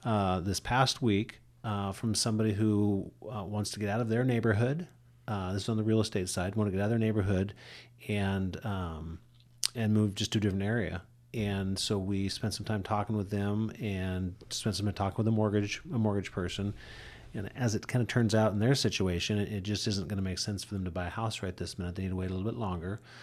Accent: American